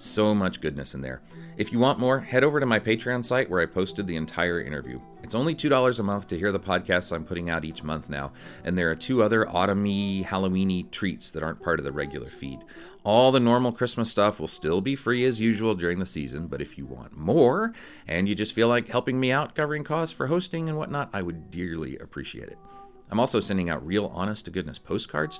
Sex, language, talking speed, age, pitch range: male, English, 225 wpm, 40-59, 80-120 Hz